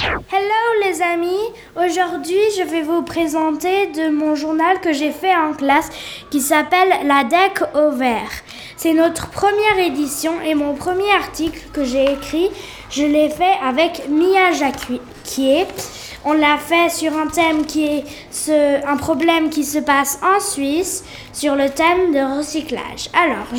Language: French